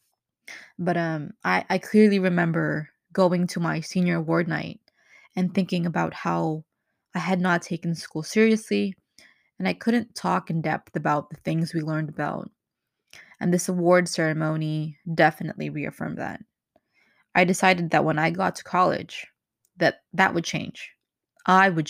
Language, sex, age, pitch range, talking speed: English, female, 20-39, 160-190 Hz, 150 wpm